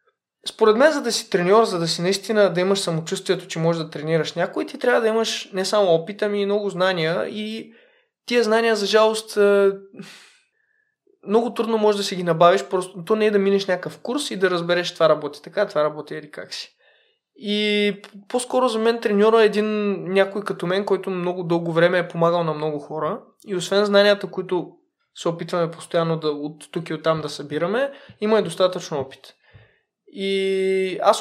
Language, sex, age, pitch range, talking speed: Bulgarian, male, 20-39, 170-220 Hz, 190 wpm